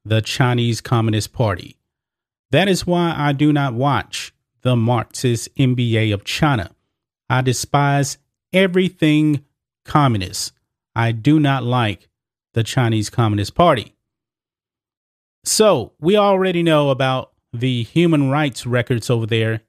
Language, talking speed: English, 120 wpm